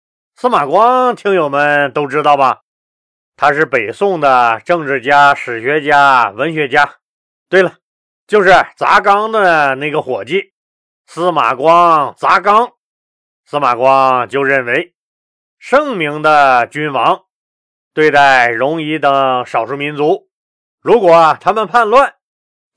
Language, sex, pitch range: Chinese, male, 140-200 Hz